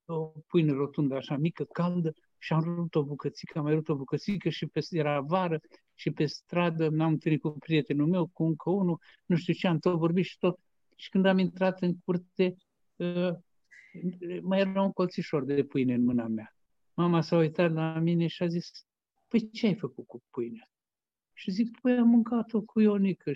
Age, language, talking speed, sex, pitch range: 60-79, Romanian, 190 wpm, male, 135-180 Hz